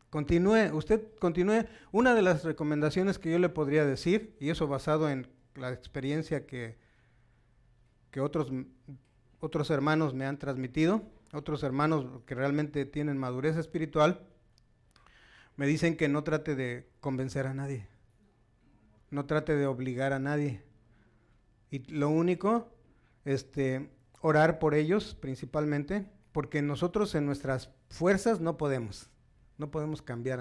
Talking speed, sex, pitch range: 130 wpm, male, 130-165 Hz